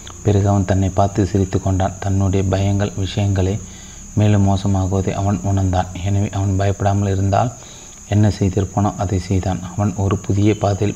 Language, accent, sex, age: Tamil, native, male, 30-49